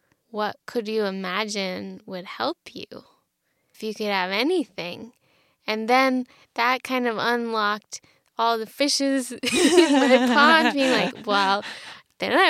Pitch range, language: 215-270 Hz, English